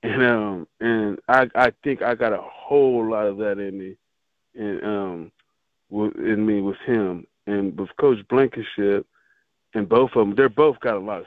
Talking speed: 180 wpm